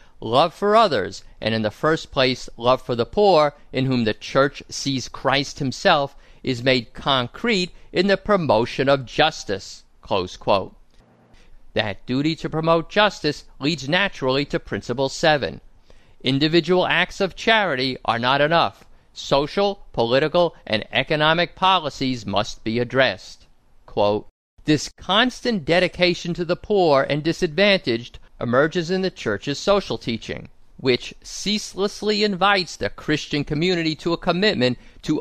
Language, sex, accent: English, male, American